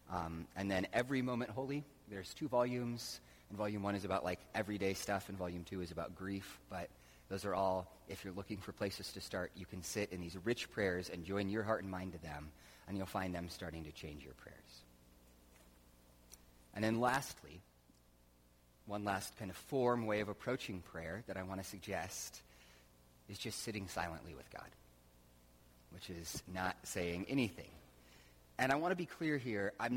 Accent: American